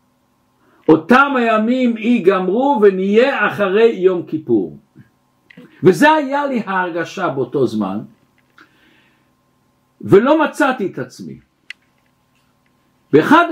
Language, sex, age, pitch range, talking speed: Hebrew, male, 60-79, 175-275 Hz, 80 wpm